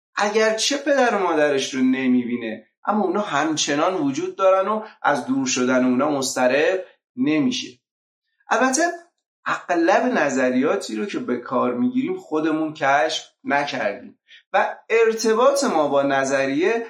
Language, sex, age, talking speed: Persian, male, 30-49, 125 wpm